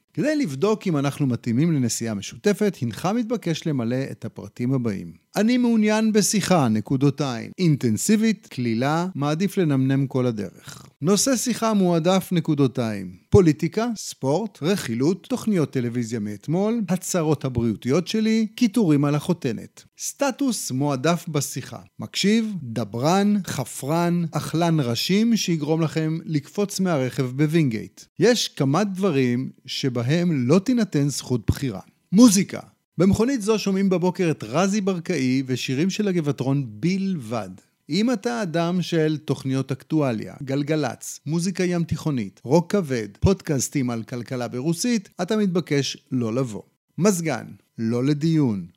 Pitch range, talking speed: 130-190 Hz, 115 wpm